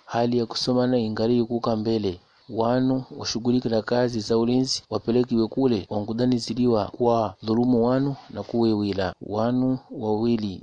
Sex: male